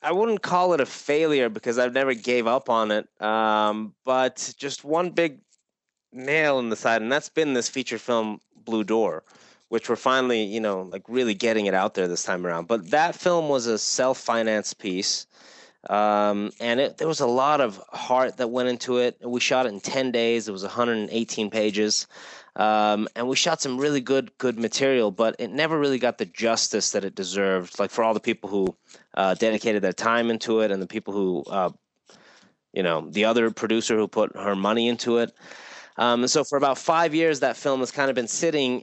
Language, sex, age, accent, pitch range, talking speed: English, male, 20-39, American, 105-130 Hz, 210 wpm